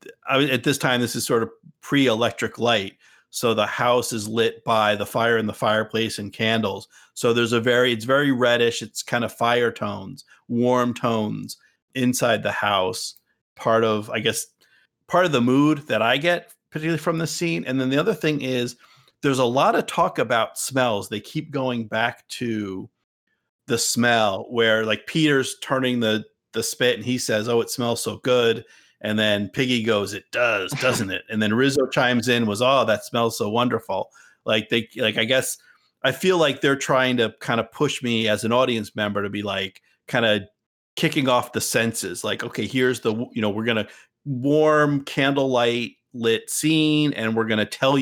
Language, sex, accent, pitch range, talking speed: English, male, American, 110-135 Hz, 195 wpm